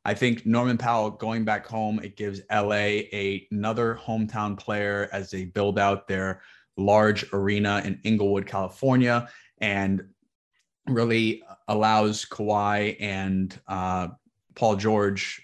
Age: 20-39